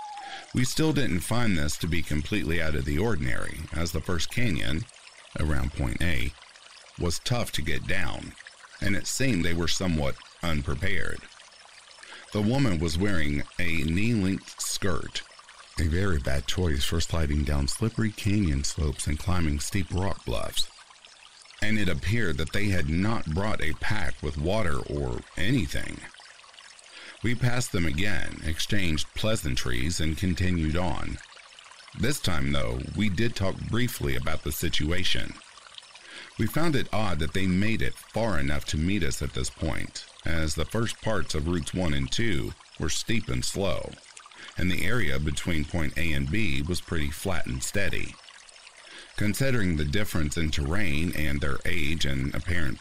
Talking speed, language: 155 wpm, English